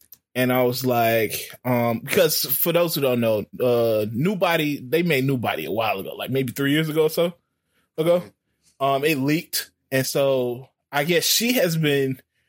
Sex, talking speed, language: male, 185 wpm, English